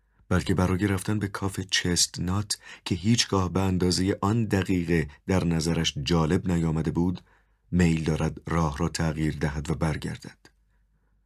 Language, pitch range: Persian, 80-95 Hz